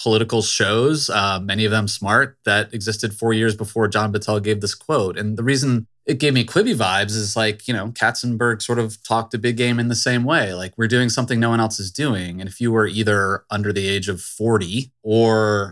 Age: 30-49